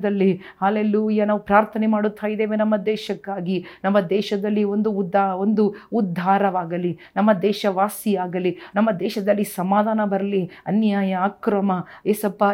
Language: Kannada